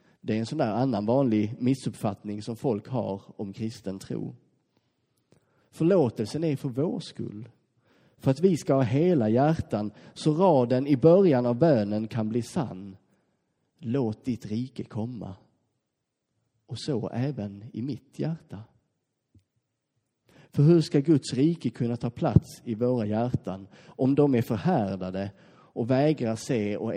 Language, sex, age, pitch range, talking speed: Swedish, male, 30-49, 110-135 Hz, 140 wpm